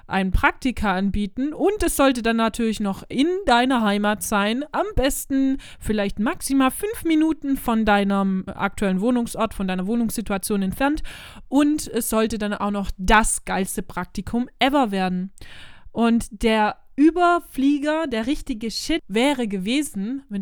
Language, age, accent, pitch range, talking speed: German, 20-39, German, 200-270 Hz, 140 wpm